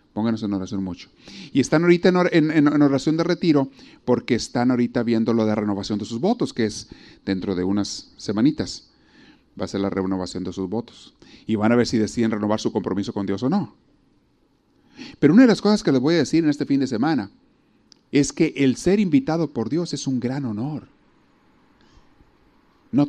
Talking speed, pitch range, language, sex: 200 wpm, 110-170 Hz, Spanish, male